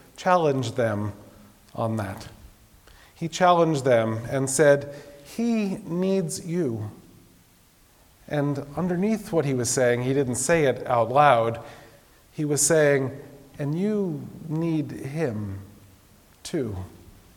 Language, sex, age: English, male, 40-59